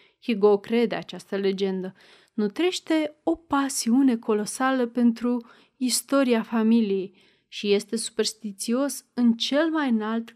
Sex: female